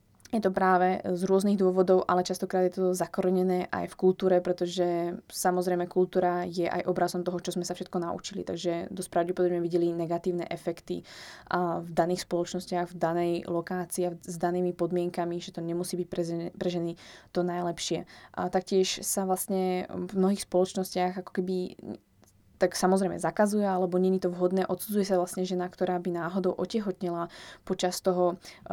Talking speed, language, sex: 160 wpm, Slovak, female